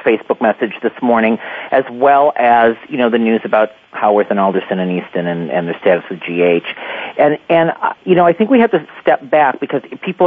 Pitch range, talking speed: 120-165 Hz, 215 wpm